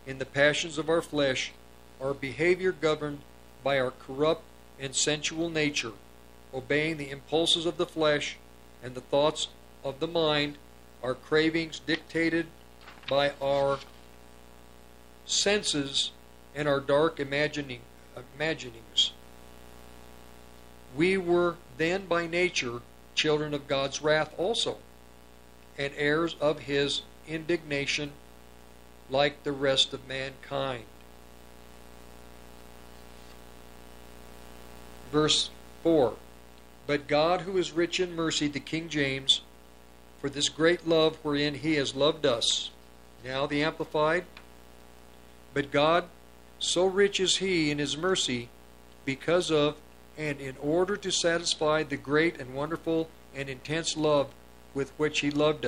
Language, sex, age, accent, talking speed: English, male, 50-69, American, 115 wpm